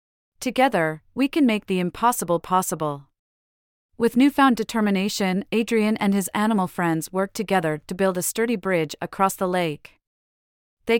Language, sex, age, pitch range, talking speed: English, female, 30-49, 165-210 Hz, 140 wpm